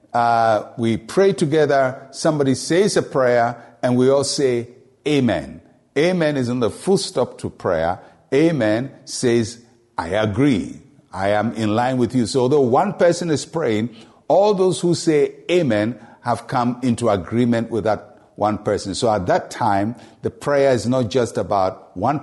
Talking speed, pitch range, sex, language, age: 165 wpm, 115-160 Hz, male, English, 50-69